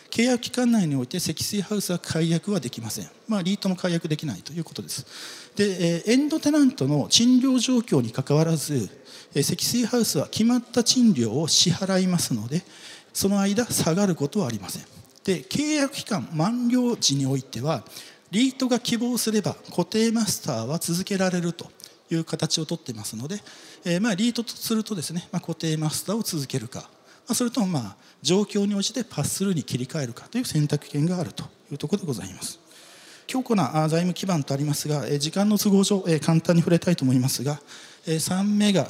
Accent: native